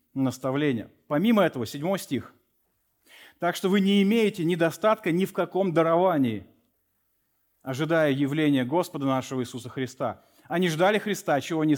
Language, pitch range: Russian, 145-190 Hz